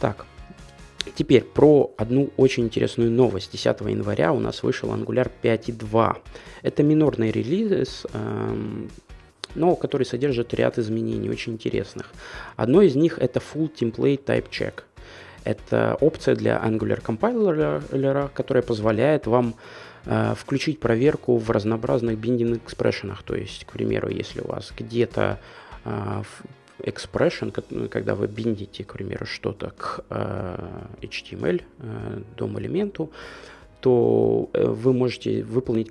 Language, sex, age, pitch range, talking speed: Russian, male, 20-39, 110-130 Hz, 120 wpm